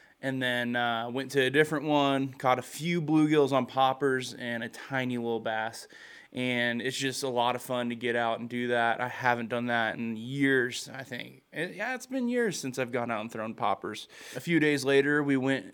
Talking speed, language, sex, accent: 215 wpm, English, male, American